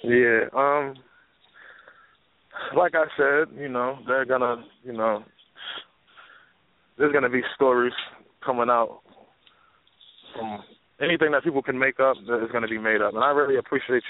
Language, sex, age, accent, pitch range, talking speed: English, male, 20-39, American, 115-135 Hz, 145 wpm